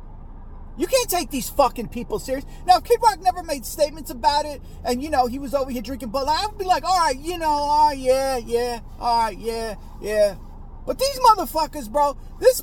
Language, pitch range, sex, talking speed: English, 220-305 Hz, male, 210 wpm